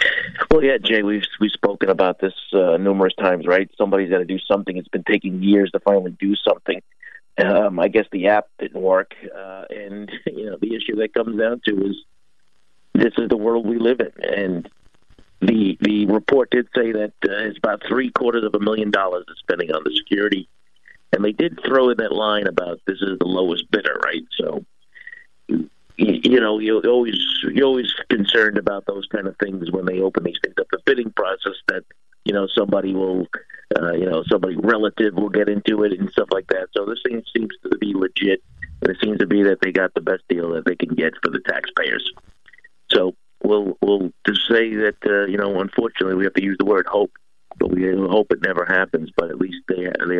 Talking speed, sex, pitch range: 215 wpm, male, 95-120 Hz